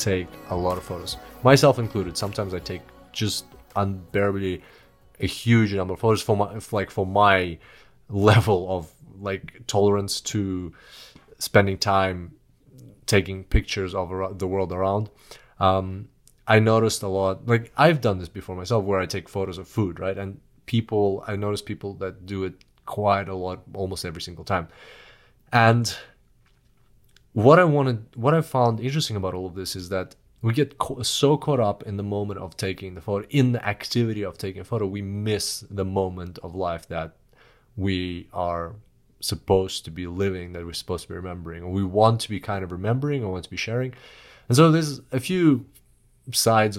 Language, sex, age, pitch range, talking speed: English, male, 30-49, 95-115 Hz, 180 wpm